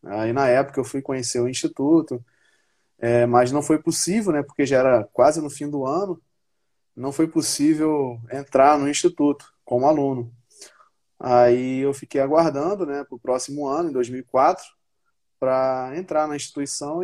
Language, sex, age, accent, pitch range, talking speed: Portuguese, male, 20-39, Brazilian, 125-155 Hz, 160 wpm